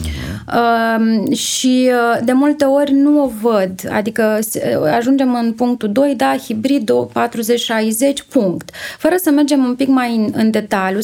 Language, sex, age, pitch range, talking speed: Romanian, female, 30-49, 215-265 Hz, 145 wpm